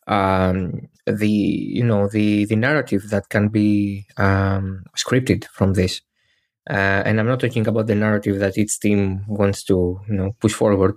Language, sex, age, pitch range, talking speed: Greek, male, 20-39, 100-115 Hz, 170 wpm